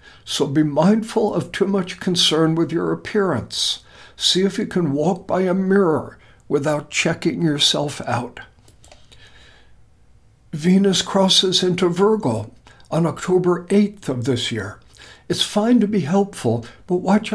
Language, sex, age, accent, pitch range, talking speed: English, male, 60-79, American, 150-195 Hz, 135 wpm